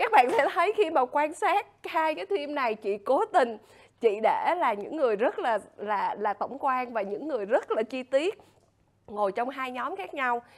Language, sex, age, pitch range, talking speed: Vietnamese, female, 20-39, 215-310 Hz, 220 wpm